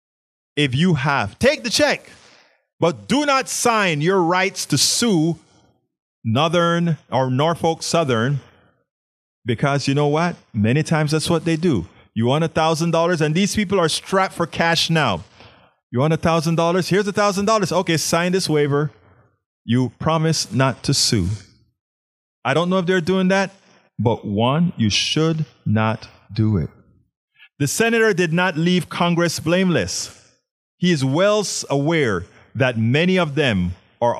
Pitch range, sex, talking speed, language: 110-170 Hz, male, 145 wpm, English